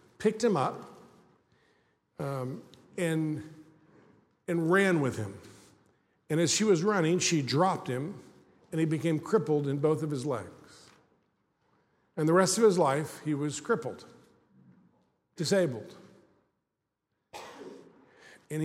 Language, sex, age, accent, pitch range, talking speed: English, male, 50-69, American, 140-190 Hz, 120 wpm